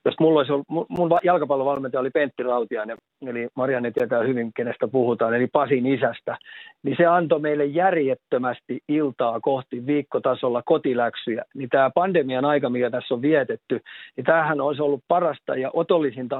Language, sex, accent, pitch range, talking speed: Finnish, male, native, 130-155 Hz, 140 wpm